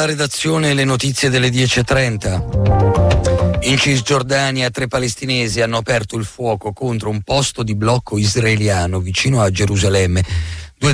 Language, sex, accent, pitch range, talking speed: Italian, male, native, 90-115 Hz, 135 wpm